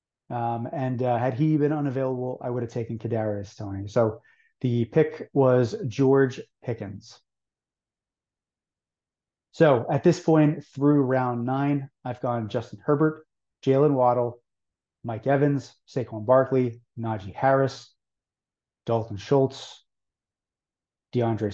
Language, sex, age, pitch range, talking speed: English, male, 30-49, 120-145 Hz, 115 wpm